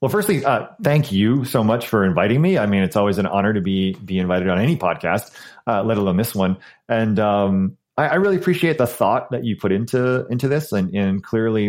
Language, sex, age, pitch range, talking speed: English, male, 30-49, 95-130 Hz, 230 wpm